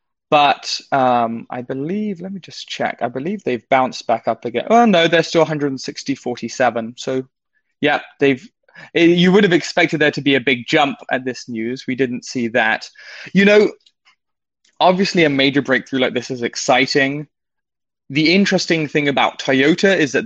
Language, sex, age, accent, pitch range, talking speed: English, male, 20-39, British, 120-150 Hz, 175 wpm